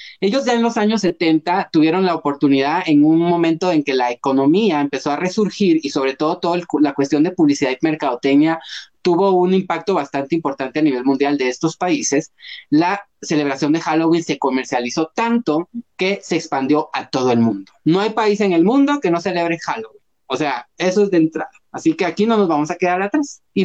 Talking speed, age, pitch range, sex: 205 wpm, 30-49, 150-205 Hz, male